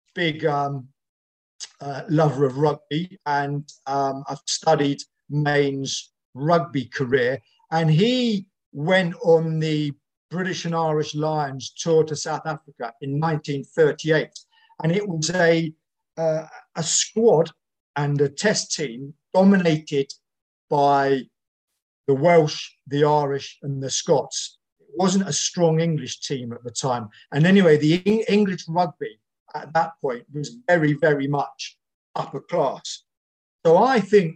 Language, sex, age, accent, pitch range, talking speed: English, male, 50-69, British, 145-185 Hz, 130 wpm